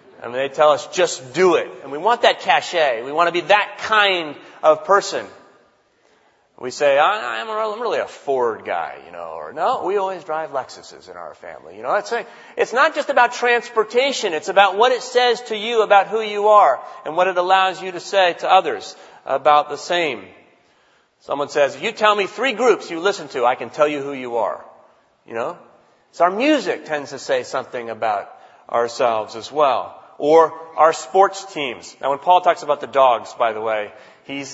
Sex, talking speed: male, 210 wpm